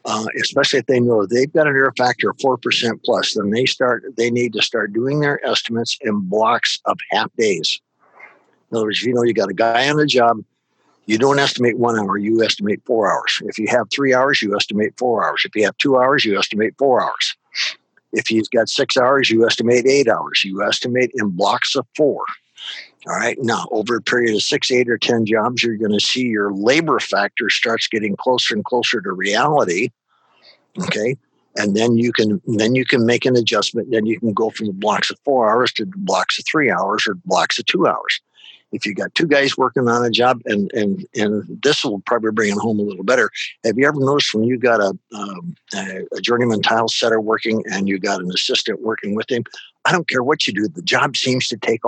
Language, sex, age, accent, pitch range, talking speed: English, male, 60-79, American, 110-125 Hz, 225 wpm